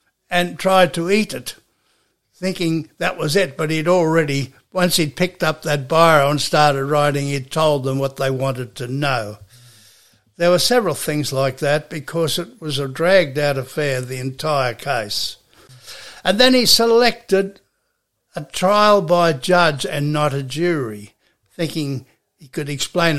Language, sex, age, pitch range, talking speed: English, male, 60-79, 135-170 Hz, 155 wpm